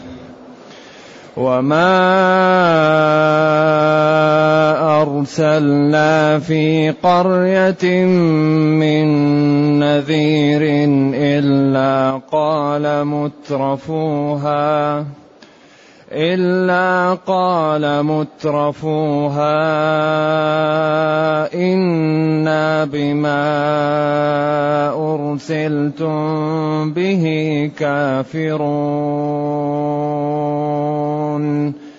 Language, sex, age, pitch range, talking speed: Arabic, male, 30-49, 145-160 Hz, 30 wpm